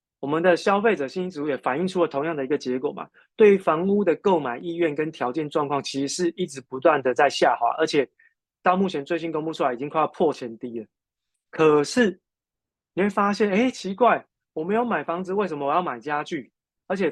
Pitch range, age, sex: 135-175 Hz, 20-39, male